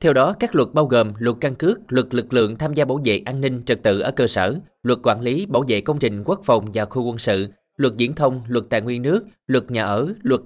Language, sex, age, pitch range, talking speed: Vietnamese, male, 20-39, 110-145 Hz, 270 wpm